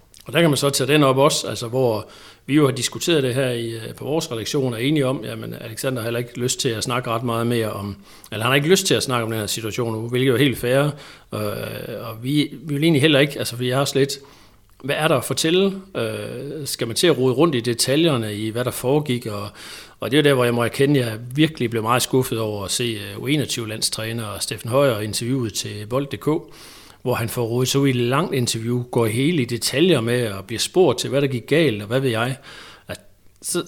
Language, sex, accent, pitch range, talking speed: Danish, male, native, 115-140 Hz, 225 wpm